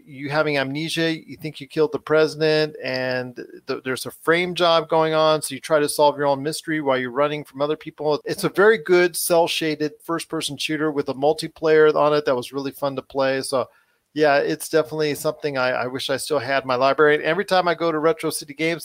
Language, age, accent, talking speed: English, 40-59, American, 230 wpm